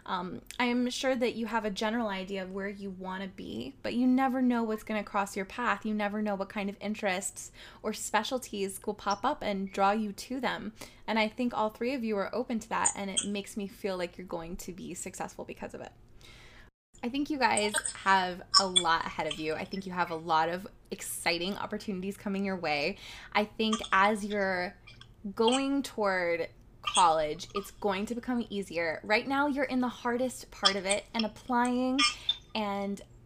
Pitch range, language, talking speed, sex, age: 195-250 Hz, English, 205 wpm, female, 20-39